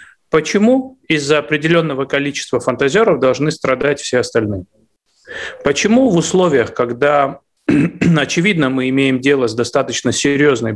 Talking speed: 110 wpm